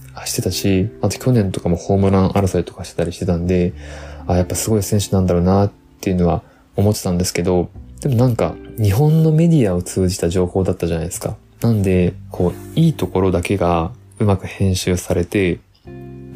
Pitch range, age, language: 85-115 Hz, 20-39, Japanese